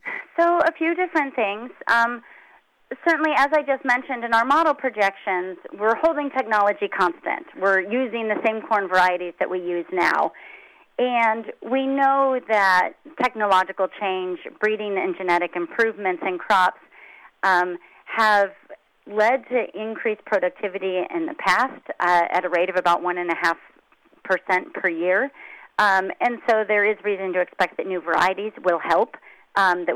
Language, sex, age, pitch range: English, female, 40-59, 180-235 Hz